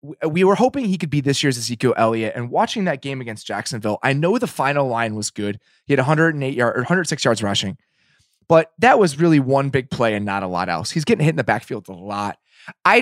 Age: 20-39